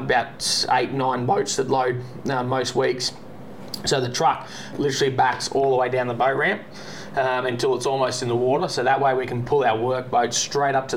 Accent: Australian